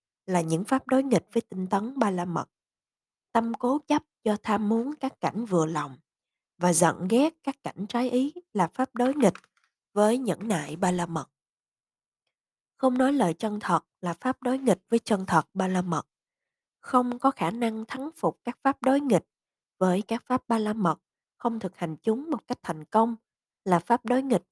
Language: Vietnamese